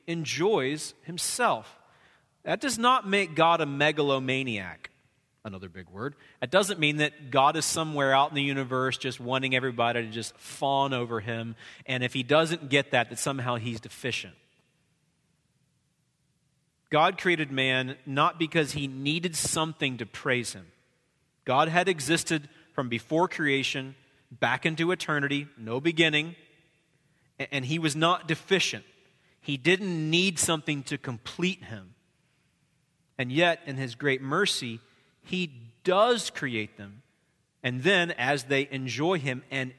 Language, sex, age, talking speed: English, male, 30-49, 140 wpm